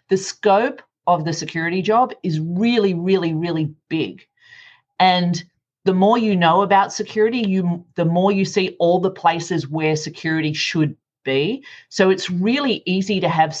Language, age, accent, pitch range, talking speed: English, 30-49, Australian, 150-190 Hz, 160 wpm